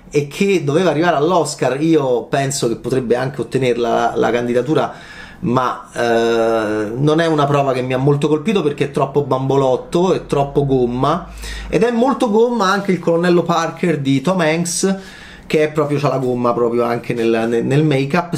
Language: Italian